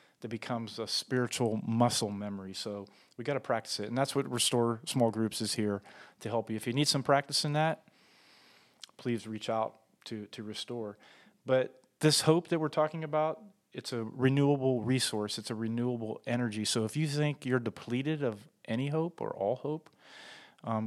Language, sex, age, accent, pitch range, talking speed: English, male, 40-59, American, 110-130 Hz, 185 wpm